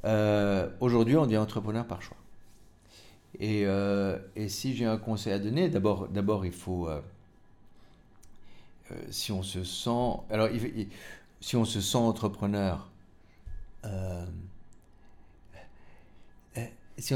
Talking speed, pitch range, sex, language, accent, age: 130 wpm, 95-120 Hz, male, English, French, 50-69